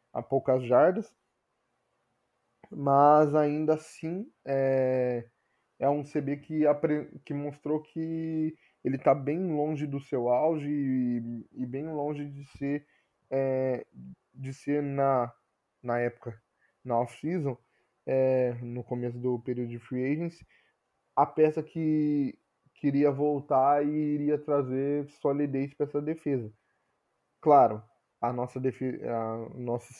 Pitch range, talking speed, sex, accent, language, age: 125-145 Hz, 125 wpm, male, Brazilian, Portuguese, 10-29